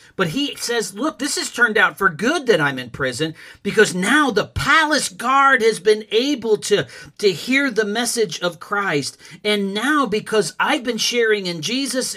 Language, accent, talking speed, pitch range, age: English, American, 180 wpm, 150-230 Hz, 40-59